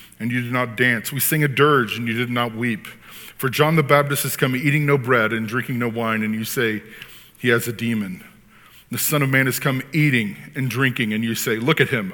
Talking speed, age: 240 wpm, 40-59